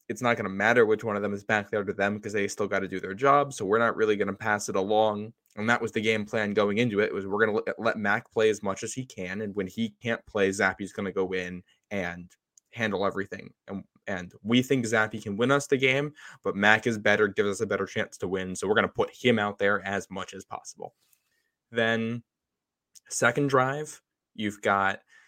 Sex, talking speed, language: male, 245 wpm, English